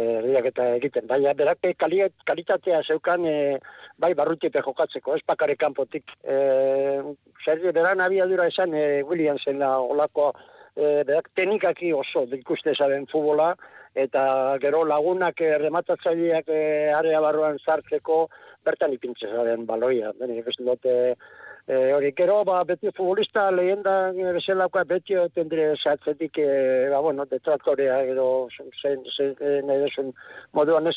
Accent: Spanish